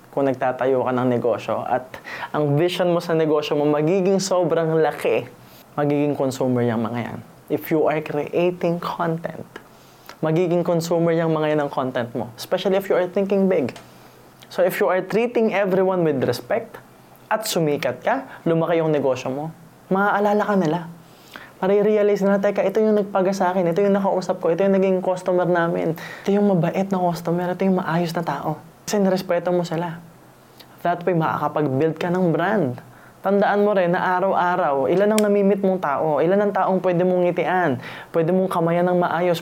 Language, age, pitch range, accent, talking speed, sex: Filipino, 20-39, 155-195 Hz, native, 175 wpm, male